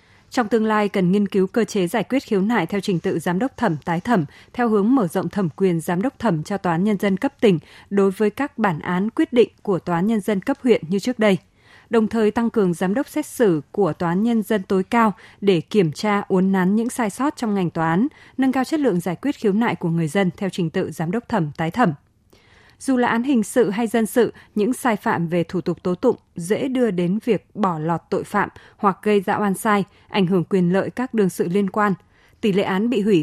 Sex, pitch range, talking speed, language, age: female, 180-230 Hz, 250 wpm, Vietnamese, 20-39